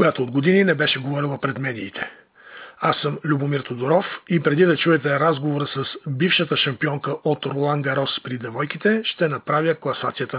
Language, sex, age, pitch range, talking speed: Bulgarian, male, 40-59, 140-175 Hz, 160 wpm